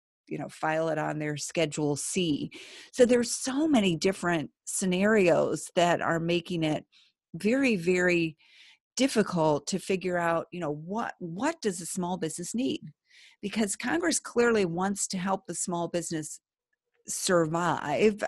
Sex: female